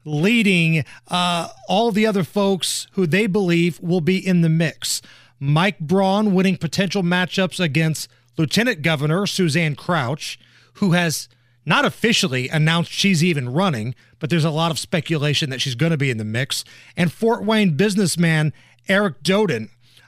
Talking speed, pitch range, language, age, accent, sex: 155 wpm, 140-190 Hz, English, 30-49, American, male